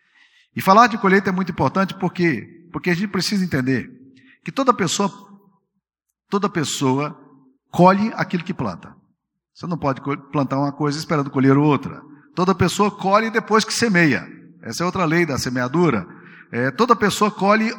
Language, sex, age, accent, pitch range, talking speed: Portuguese, male, 50-69, Brazilian, 135-185 Hz, 160 wpm